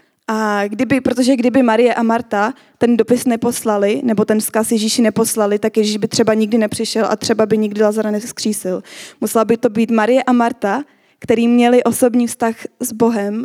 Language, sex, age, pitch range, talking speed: Czech, female, 20-39, 205-230 Hz, 180 wpm